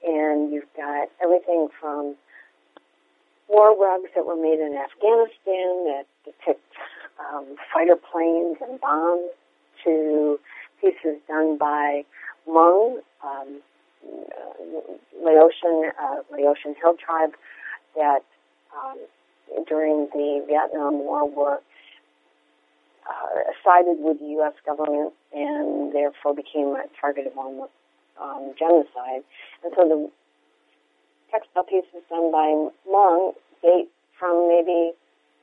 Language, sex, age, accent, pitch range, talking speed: English, female, 50-69, American, 145-175 Hz, 105 wpm